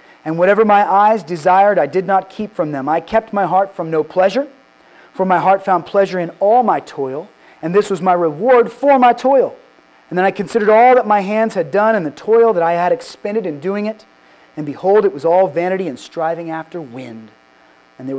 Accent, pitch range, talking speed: American, 150-205 Hz, 220 wpm